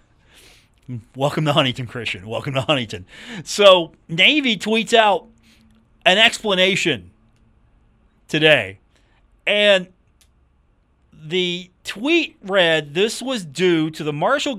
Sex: male